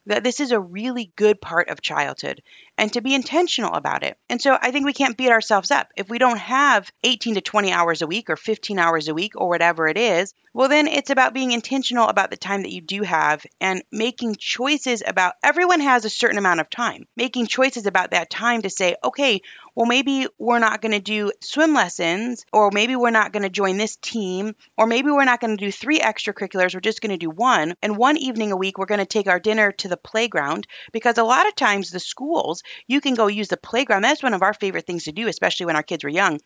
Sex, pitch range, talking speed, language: female, 195-255 Hz, 245 wpm, English